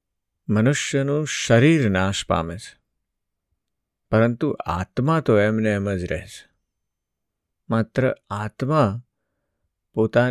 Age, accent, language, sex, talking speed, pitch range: 50-69, native, Gujarati, male, 70 wpm, 95-125 Hz